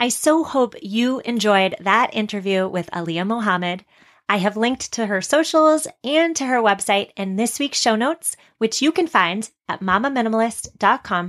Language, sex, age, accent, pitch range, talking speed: English, female, 30-49, American, 190-245 Hz, 165 wpm